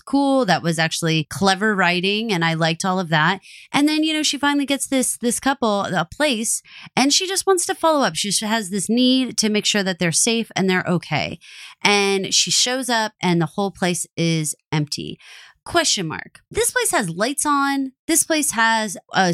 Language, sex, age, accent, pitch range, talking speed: English, female, 30-49, American, 185-295 Hz, 200 wpm